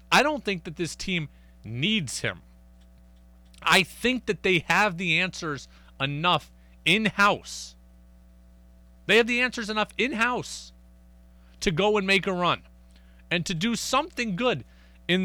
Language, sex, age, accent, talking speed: English, male, 30-49, American, 140 wpm